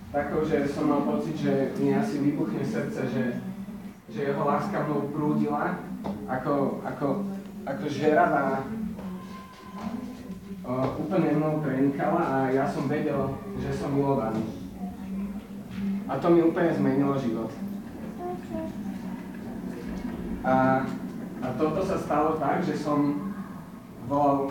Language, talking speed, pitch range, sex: Slovak, 115 wpm, 130-190 Hz, male